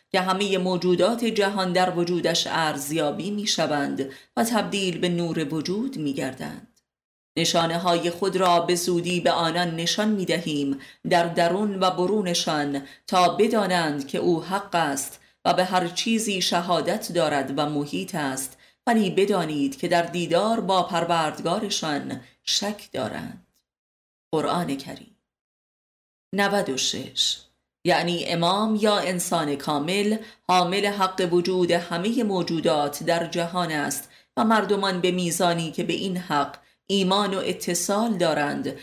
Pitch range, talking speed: 160-200 Hz, 125 wpm